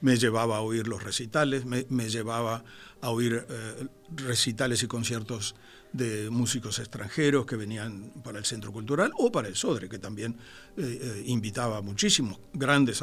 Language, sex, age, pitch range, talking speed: Spanish, male, 60-79, 115-145 Hz, 160 wpm